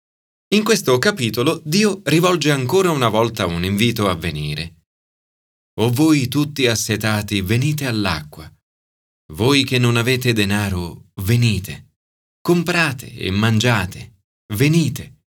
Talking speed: 110 wpm